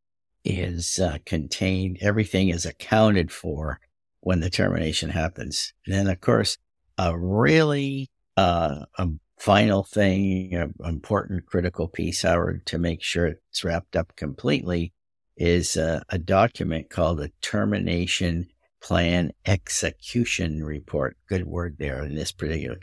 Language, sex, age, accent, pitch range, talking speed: English, male, 60-79, American, 80-95 Hz, 130 wpm